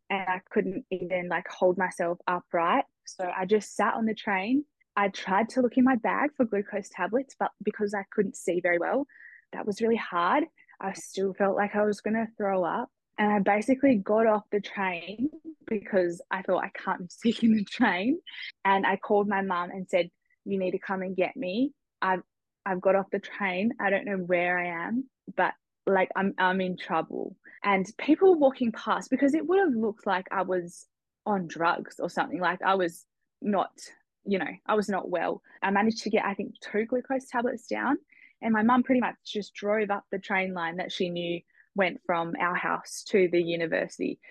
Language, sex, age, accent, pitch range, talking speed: English, female, 20-39, Australian, 190-245 Hz, 205 wpm